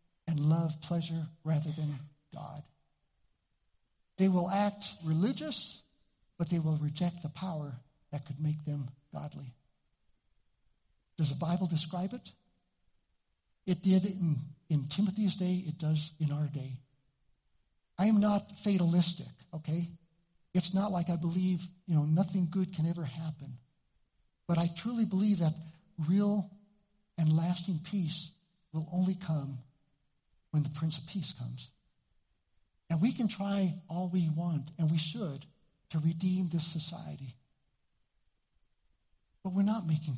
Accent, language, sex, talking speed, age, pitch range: American, English, male, 135 wpm, 60-79, 145-180 Hz